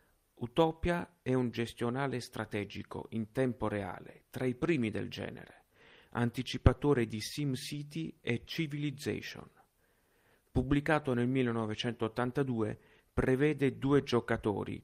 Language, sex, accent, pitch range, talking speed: Italian, male, native, 115-135 Hz, 95 wpm